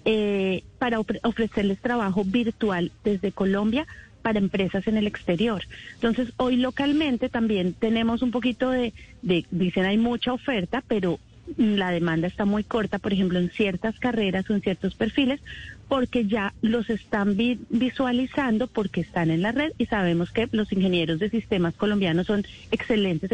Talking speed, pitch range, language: 155 wpm, 195-245 Hz, Spanish